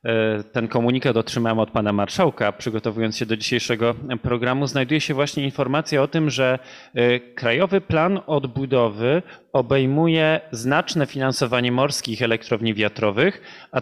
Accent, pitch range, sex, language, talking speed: native, 115-145 Hz, male, Polish, 120 wpm